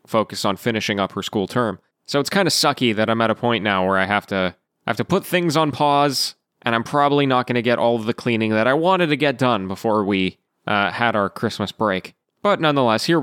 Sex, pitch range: male, 115-155 Hz